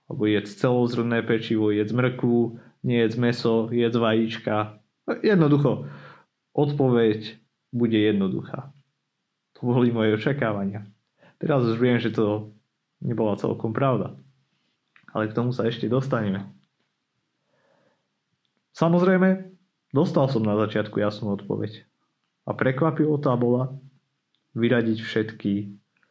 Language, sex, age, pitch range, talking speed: Slovak, male, 30-49, 110-140 Hz, 105 wpm